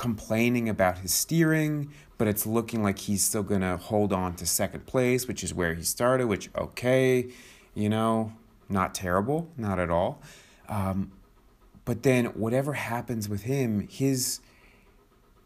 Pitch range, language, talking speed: 95-125 Hz, English, 150 wpm